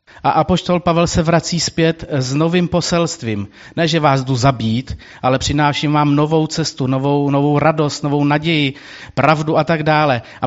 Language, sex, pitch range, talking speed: Czech, male, 130-170 Hz, 165 wpm